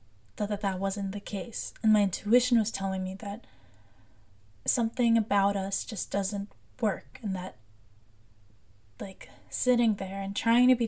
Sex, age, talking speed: female, 10-29, 155 wpm